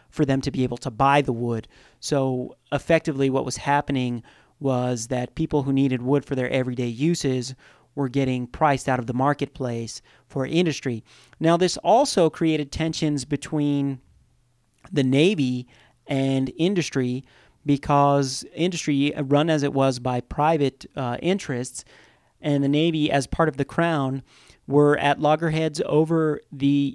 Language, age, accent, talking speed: English, 40-59, American, 145 wpm